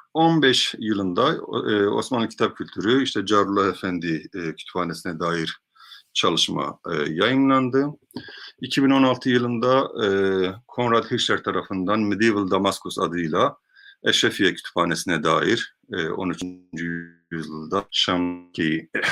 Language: Turkish